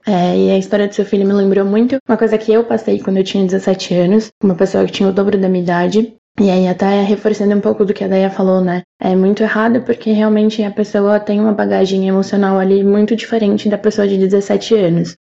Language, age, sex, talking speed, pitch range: Portuguese, 10-29, female, 240 wpm, 195-230 Hz